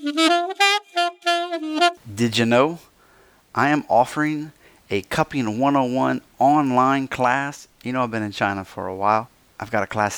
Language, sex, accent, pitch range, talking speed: English, male, American, 105-135 Hz, 140 wpm